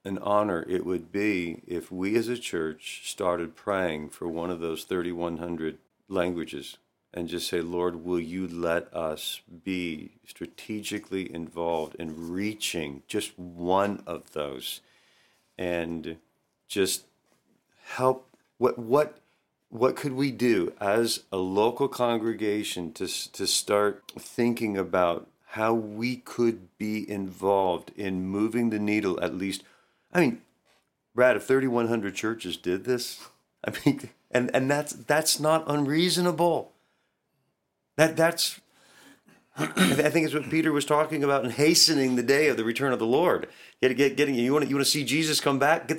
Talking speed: 155 wpm